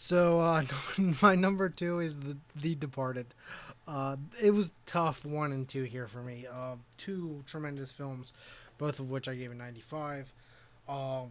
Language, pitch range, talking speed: English, 125-145 Hz, 165 wpm